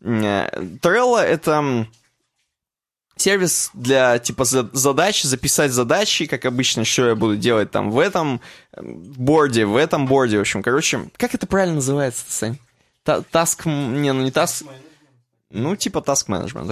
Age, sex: 20-39, male